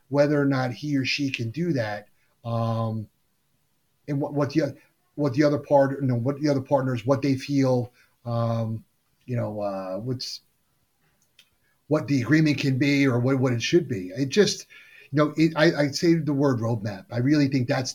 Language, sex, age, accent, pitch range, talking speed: English, male, 30-49, American, 120-145 Hz, 195 wpm